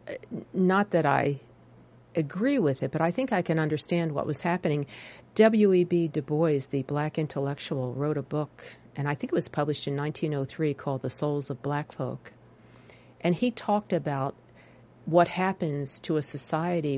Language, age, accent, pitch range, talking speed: English, 50-69, American, 140-170 Hz, 165 wpm